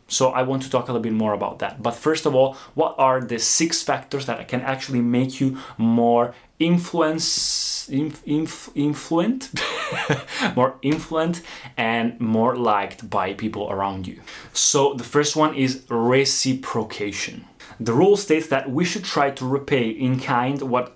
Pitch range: 115-145 Hz